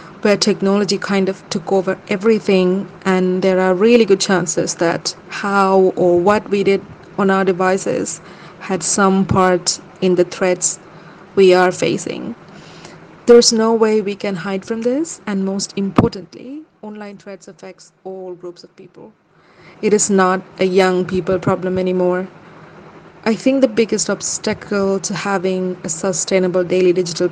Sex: female